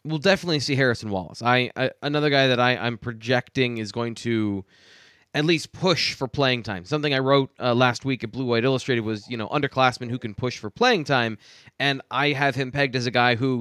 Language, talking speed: English, 225 wpm